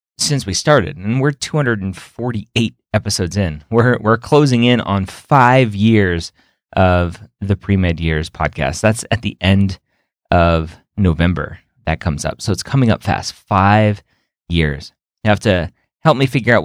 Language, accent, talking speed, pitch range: English, American, 155 wpm, 90-115 Hz